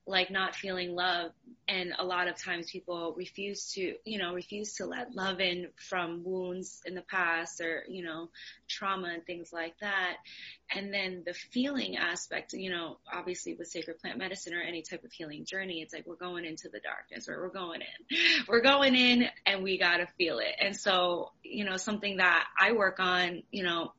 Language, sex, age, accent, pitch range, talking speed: English, female, 20-39, American, 175-205 Hz, 205 wpm